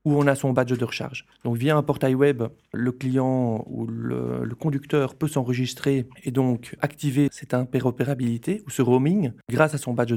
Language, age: French, 40-59